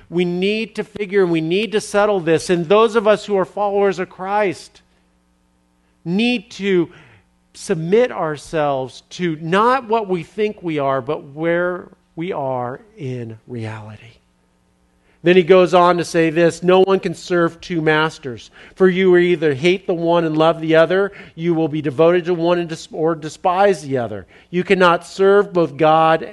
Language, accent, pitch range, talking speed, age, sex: English, American, 125-180 Hz, 170 wpm, 50-69, male